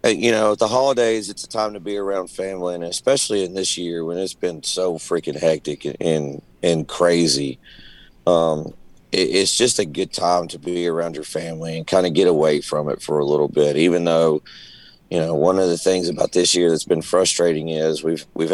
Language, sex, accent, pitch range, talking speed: English, male, American, 80-90 Hz, 215 wpm